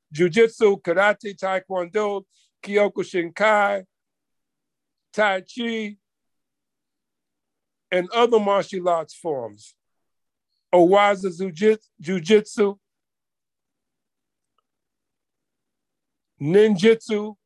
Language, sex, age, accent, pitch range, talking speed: Russian, male, 60-79, American, 185-220 Hz, 50 wpm